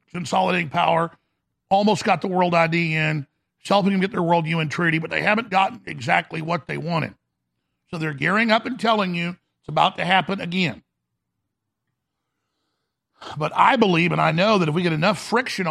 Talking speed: 185 wpm